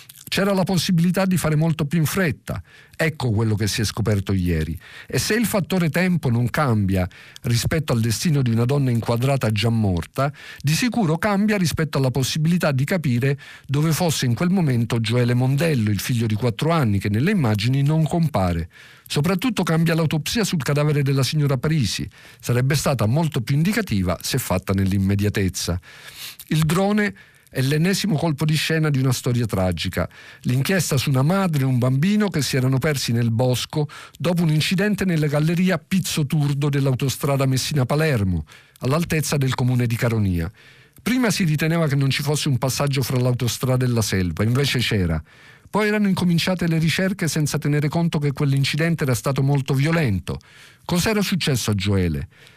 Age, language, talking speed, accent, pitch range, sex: 50-69, Italian, 165 wpm, native, 120-165 Hz, male